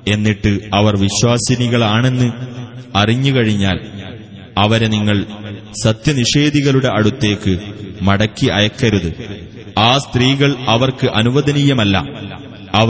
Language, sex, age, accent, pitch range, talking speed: Malayalam, male, 30-49, native, 100-120 Hz, 70 wpm